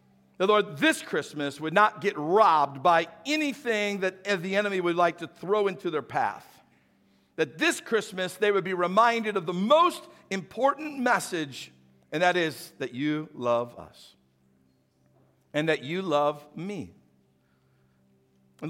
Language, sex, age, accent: English, male, 50-69, American